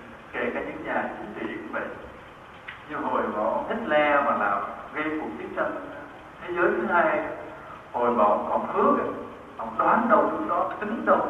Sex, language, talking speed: male, Vietnamese, 190 wpm